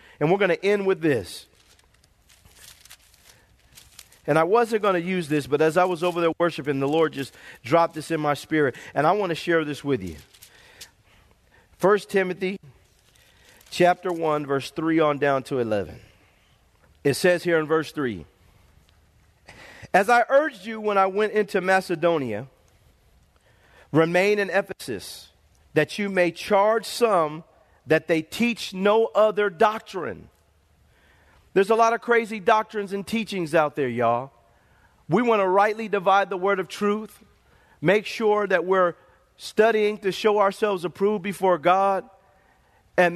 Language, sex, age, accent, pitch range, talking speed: English, male, 40-59, American, 155-200 Hz, 150 wpm